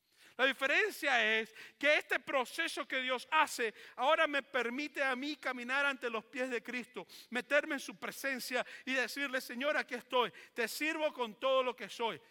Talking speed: 175 wpm